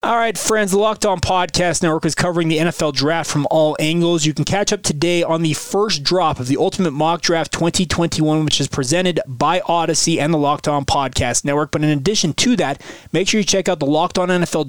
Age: 30-49